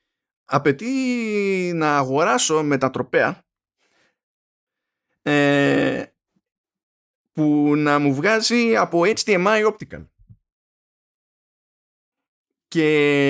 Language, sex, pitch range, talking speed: Greek, male, 115-180 Hz, 65 wpm